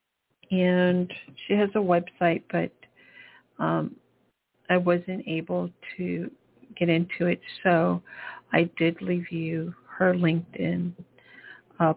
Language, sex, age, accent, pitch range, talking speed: English, female, 50-69, American, 160-185 Hz, 110 wpm